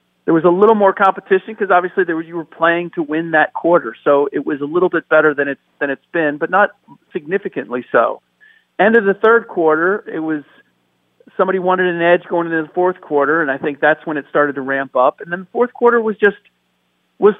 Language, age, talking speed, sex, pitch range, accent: English, 40-59, 230 wpm, male, 150-195 Hz, American